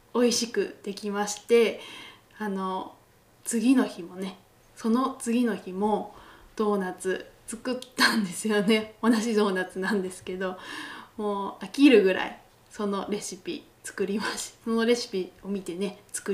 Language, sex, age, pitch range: Japanese, female, 20-39, 190-225 Hz